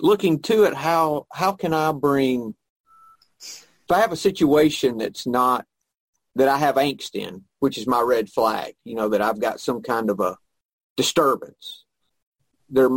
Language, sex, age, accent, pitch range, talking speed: English, male, 50-69, American, 125-150 Hz, 165 wpm